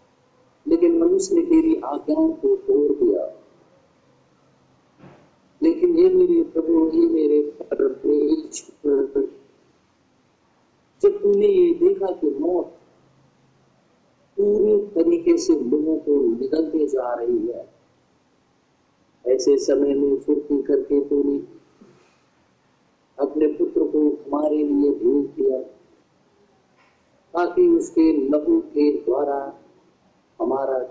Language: Hindi